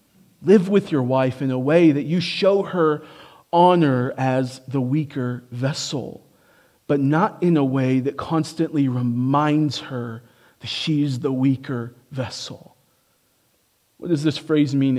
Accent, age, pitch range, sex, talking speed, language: American, 40-59, 135-185 Hz, male, 140 wpm, English